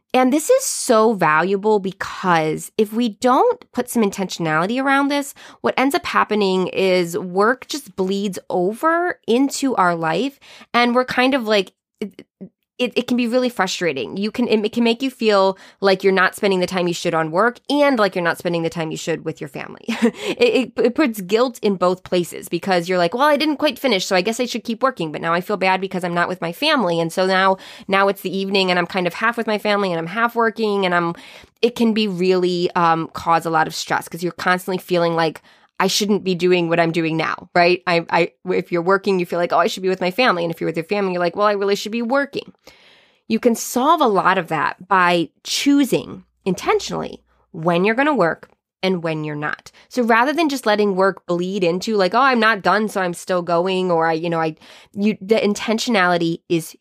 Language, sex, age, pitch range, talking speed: English, female, 20-39, 180-235 Hz, 230 wpm